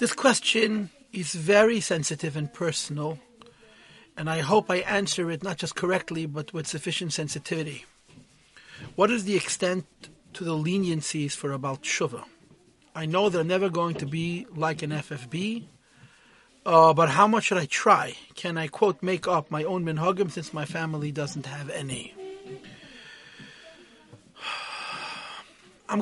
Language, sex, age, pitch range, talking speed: English, male, 40-59, 150-190 Hz, 145 wpm